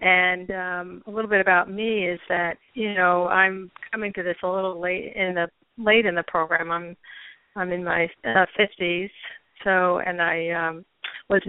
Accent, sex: American, female